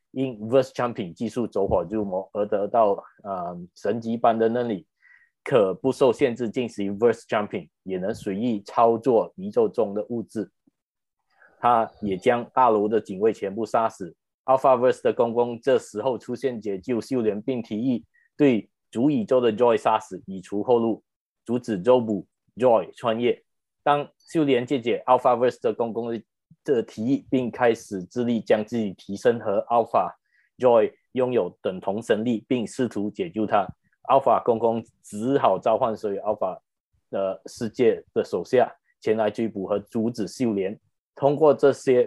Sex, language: male, Chinese